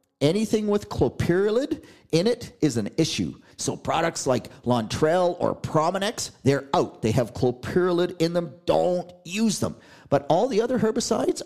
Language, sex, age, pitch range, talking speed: English, male, 40-59, 125-170 Hz, 145 wpm